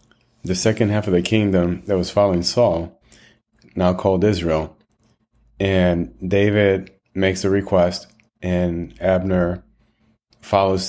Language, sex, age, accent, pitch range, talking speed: English, male, 30-49, American, 85-100 Hz, 115 wpm